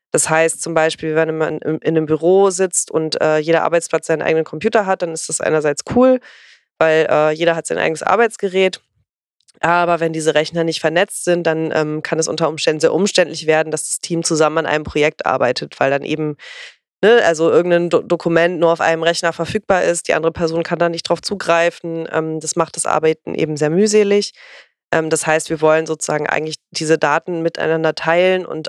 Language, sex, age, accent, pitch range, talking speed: German, female, 20-39, German, 155-170 Hz, 200 wpm